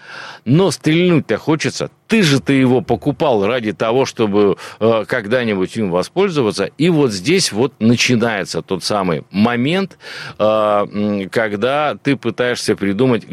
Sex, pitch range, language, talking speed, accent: male, 105-140 Hz, Russian, 115 wpm, native